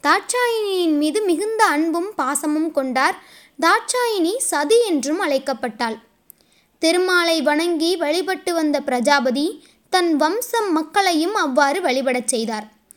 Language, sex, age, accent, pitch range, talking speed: Tamil, female, 20-39, native, 275-385 Hz, 95 wpm